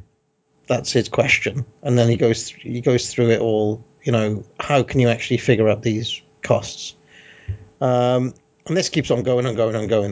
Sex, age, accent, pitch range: male, 40-59, British, 110-140 Hz